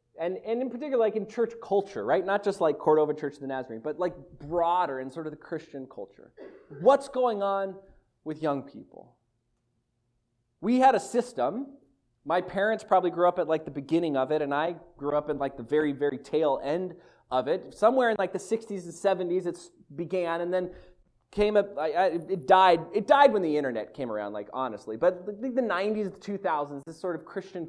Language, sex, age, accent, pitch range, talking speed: English, male, 20-39, American, 170-265 Hz, 210 wpm